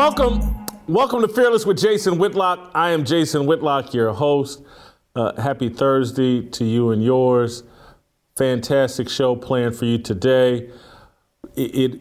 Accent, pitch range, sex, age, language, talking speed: American, 115-140 Hz, male, 40-59, English, 135 wpm